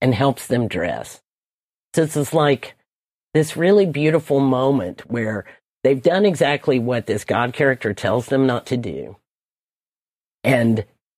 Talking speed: 140 wpm